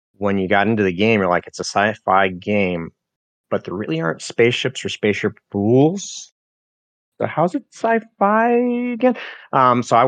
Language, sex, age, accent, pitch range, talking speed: English, male, 30-49, American, 95-120 Hz, 165 wpm